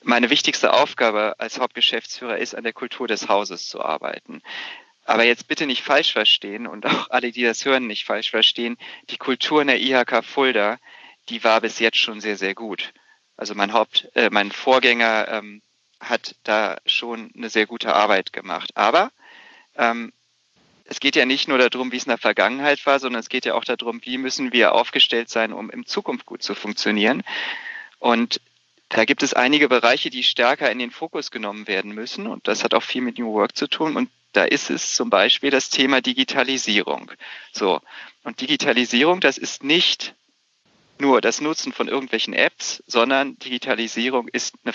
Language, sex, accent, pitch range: German, male, German, 115-140 Hz